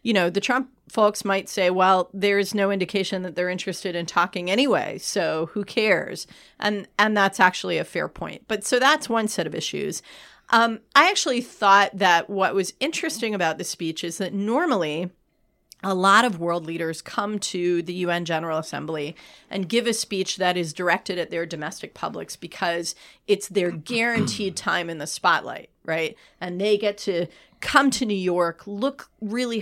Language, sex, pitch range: English, female, 175-230 Hz